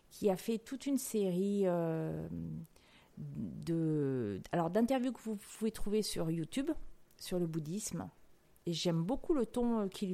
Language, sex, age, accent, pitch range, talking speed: French, female, 40-59, French, 170-210 Hz, 150 wpm